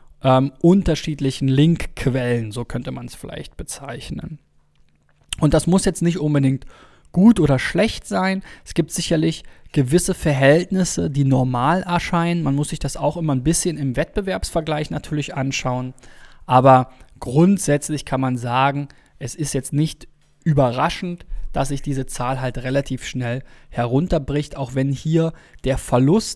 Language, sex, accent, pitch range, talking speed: German, male, German, 125-150 Hz, 140 wpm